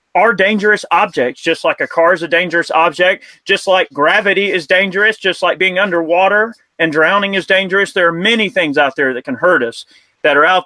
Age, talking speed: 30-49, 210 wpm